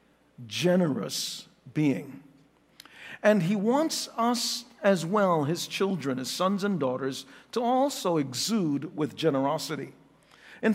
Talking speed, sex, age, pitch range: 110 wpm, male, 50-69, 145-225 Hz